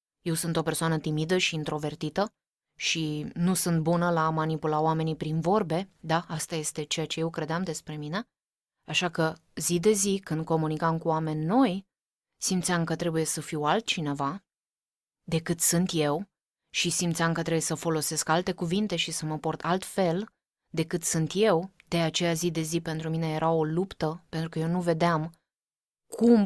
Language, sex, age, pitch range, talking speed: Romanian, female, 20-39, 160-180 Hz, 175 wpm